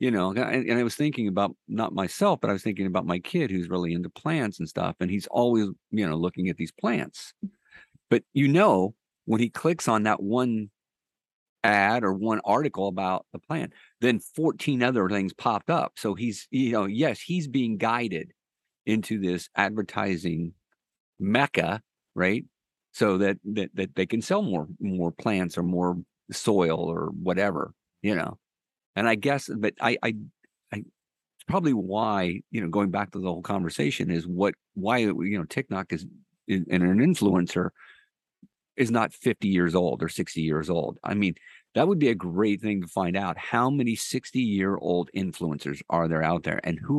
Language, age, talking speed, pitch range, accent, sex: English, 50-69, 180 wpm, 90-115 Hz, American, male